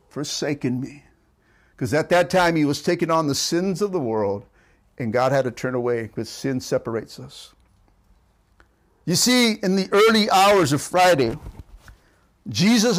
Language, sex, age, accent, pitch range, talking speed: English, male, 50-69, American, 135-220 Hz, 155 wpm